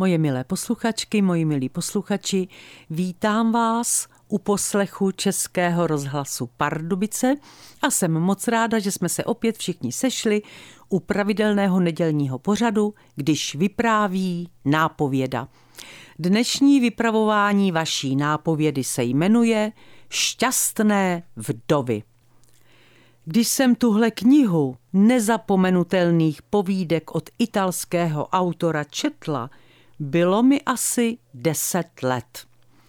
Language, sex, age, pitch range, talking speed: Czech, female, 50-69, 155-220 Hz, 95 wpm